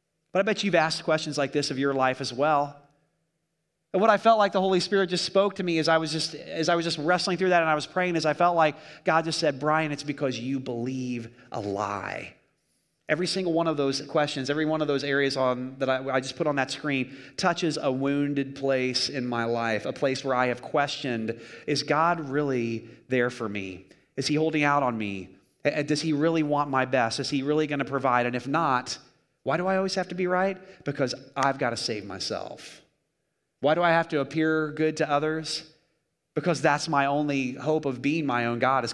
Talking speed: 225 wpm